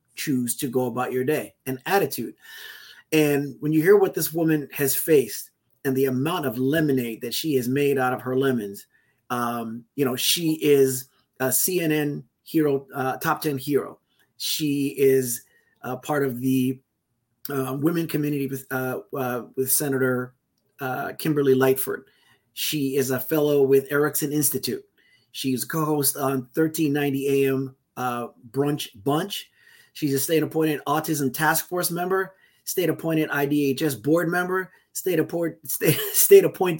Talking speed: 140 wpm